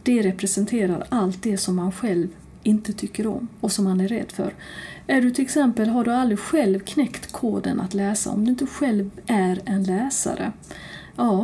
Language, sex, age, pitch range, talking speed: Swedish, female, 40-59, 195-250 Hz, 190 wpm